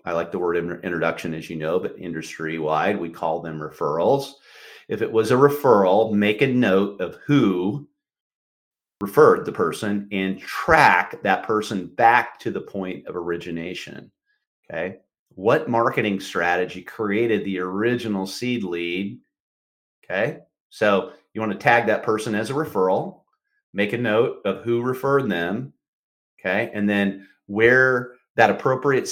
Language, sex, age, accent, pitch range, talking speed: English, male, 40-59, American, 90-125 Hz, 145 wpm